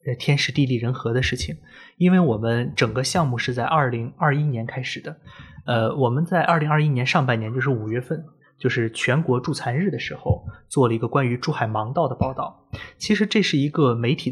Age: 20-39